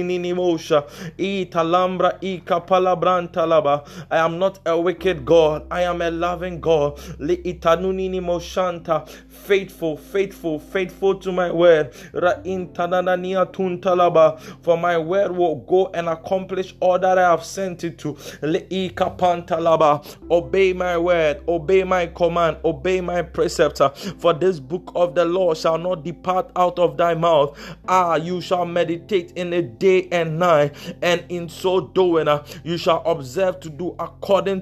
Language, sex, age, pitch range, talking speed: English, male, 20-39, 165-185 Hz, 125 wpm